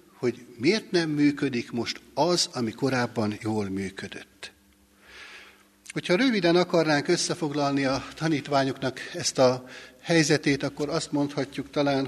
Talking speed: 115 wpm